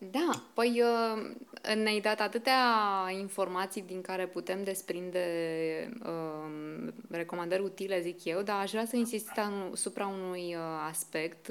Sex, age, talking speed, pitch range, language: female, 20-39, 125 wpm, 170-215 Hz, Romanian